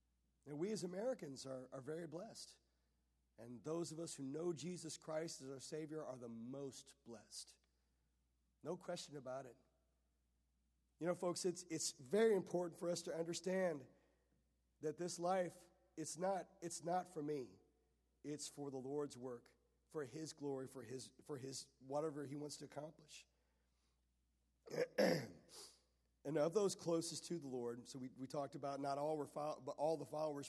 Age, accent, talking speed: 40-59, American, 165 wpm